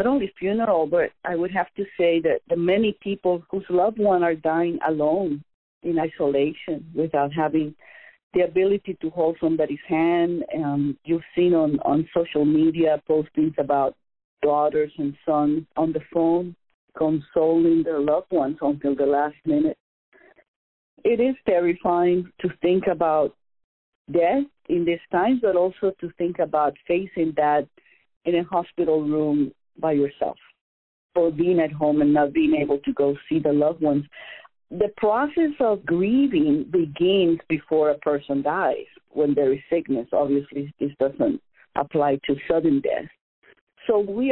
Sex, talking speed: female, 150 wpm